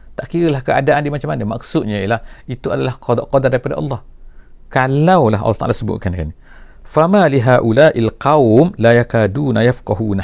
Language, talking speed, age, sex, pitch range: English, 145 wpm, 50-69, male, 100-140 Hz